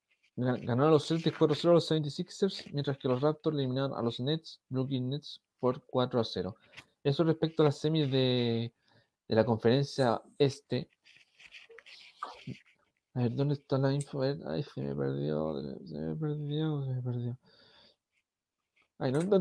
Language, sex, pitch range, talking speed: Spanish, male, 125-155 Hz, 160 wpm